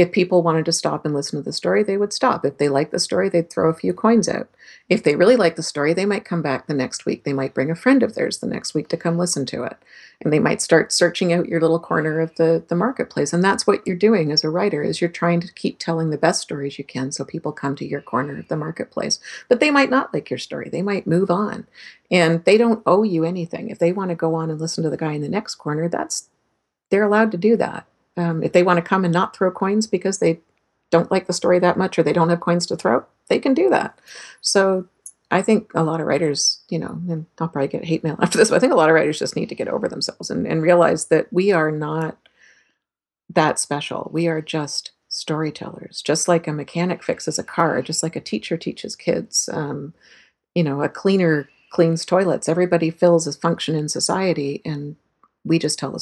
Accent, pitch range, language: American, 155-185 Hz, English